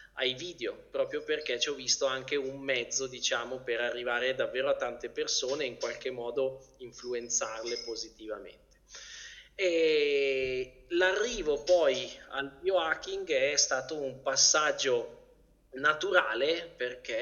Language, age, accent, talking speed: Italian, 20-39, native, 120 wpm